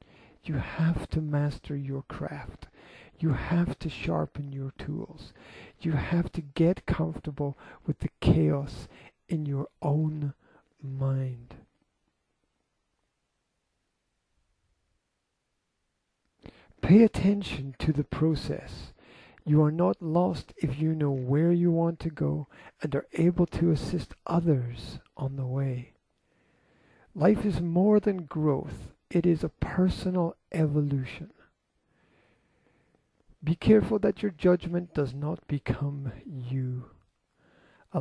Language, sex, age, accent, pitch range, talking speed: English, male, 50-69, American, 135-165 Hz, 110 wpm